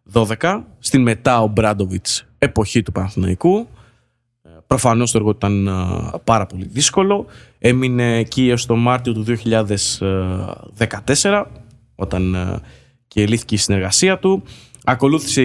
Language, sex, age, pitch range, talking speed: Greek, male, 20-39, 105-130 Hz, 110 wpm